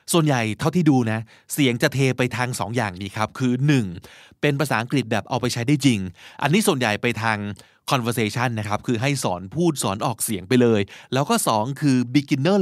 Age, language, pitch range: 20-39, Thai, 115-150 Hz